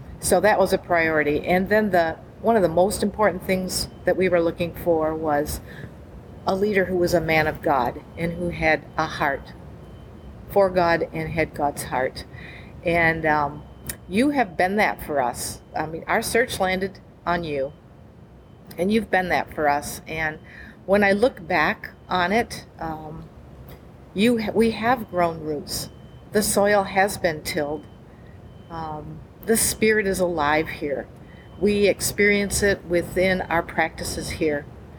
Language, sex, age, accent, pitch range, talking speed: English, female, 50-69, American, 155-195 Hz, 160 wpm